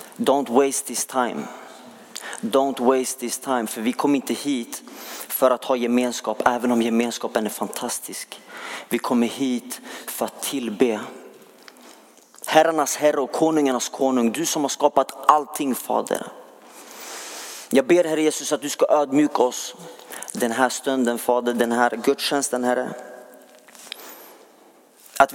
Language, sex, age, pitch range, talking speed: Swedish, male, 30-49, 130-175 Hz, 135 wpm